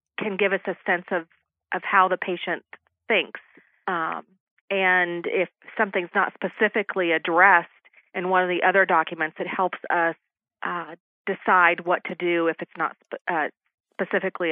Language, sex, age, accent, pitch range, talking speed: English, female, 40-59, American, 165-190 Hz, 155 wpm